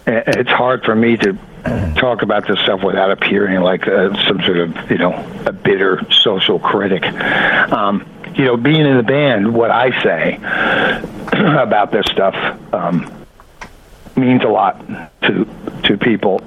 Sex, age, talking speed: male, 60-79, 150 wpm